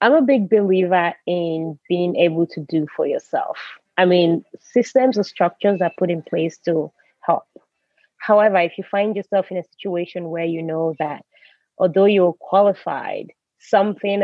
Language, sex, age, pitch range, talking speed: German, female, 30-49, 170-205 Hz, 160 wpm